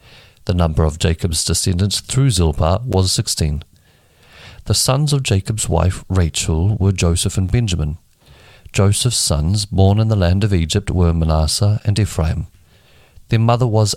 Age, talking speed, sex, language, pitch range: 50-69, 145 wpm, male, English, 85-110 Hz